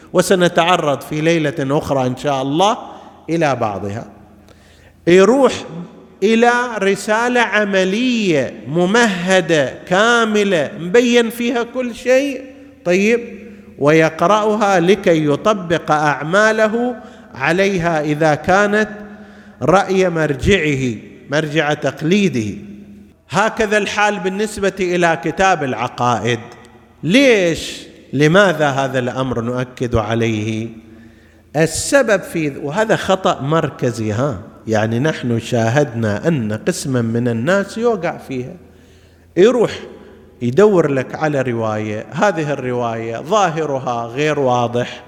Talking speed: 90 wpm